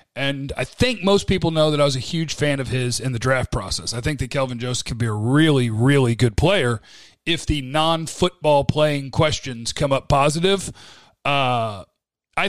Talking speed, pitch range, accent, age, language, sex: 190 wpm, 130-170 Hz, American, 40-59, English, male